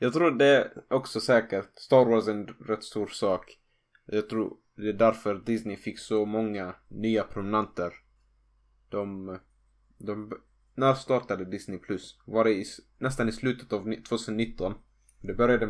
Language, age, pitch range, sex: Swedish, 20-39, 100-115 Hz, male